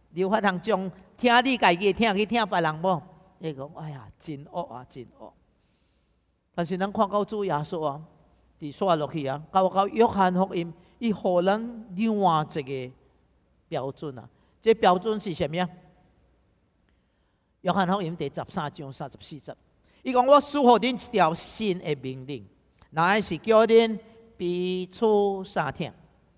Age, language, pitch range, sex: 50-69, English, 150-215 Hz, male